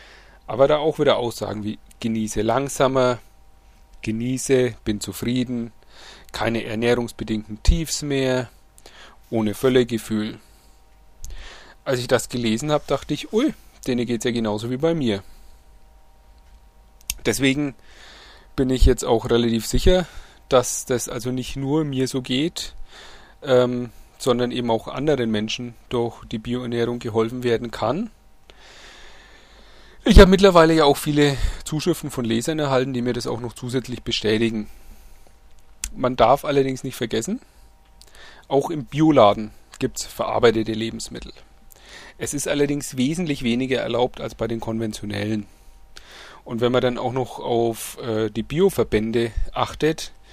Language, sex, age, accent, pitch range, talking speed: German, male, 30-49, German, 110-135 Hz, 130 wpm